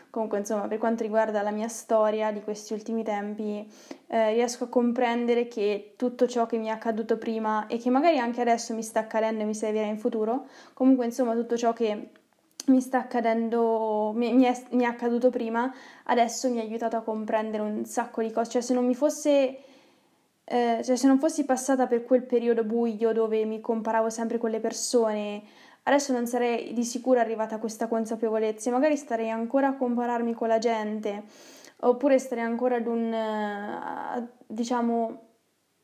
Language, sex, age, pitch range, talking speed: Italian, female, 10-29, 225-250 Hz, 180 wpm